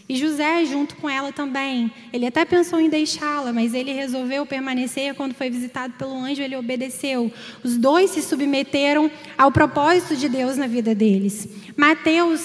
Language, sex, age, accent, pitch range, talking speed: Portuguese, female, 10-29, Brazilian, 240-305 Hz, 165 wpm